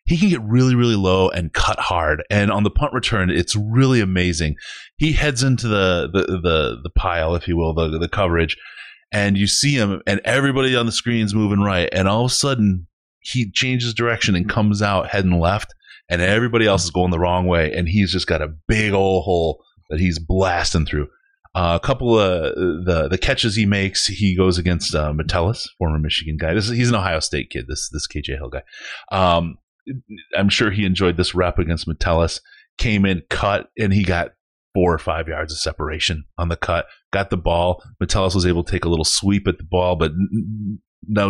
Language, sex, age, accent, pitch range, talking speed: English, male, 30-49, American, 85-105 Hz, 210 wpm